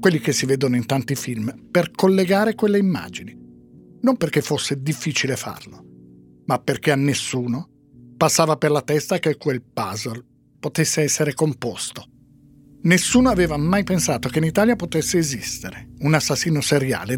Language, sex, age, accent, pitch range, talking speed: Italian, male, 50-69, native, 130-175 Hz, 145 wpm